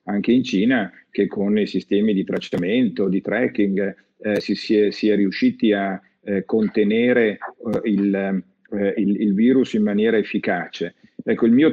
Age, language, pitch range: 50-69, Italian, 100-120 Hz